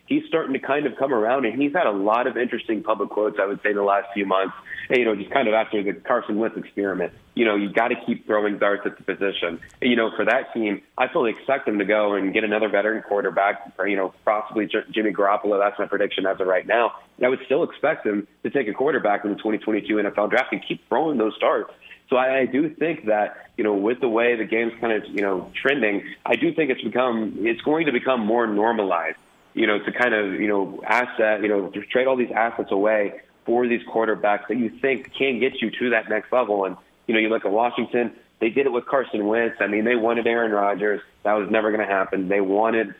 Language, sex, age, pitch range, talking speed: English, male, 30-49, 100-120 Hz, 255 wpm